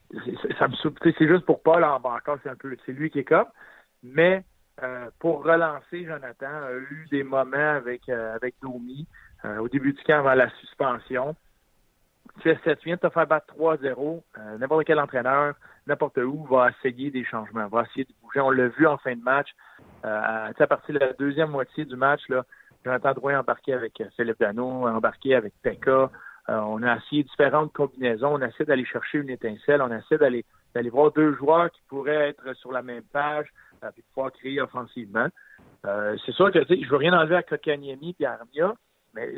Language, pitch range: French, 125-150 Hz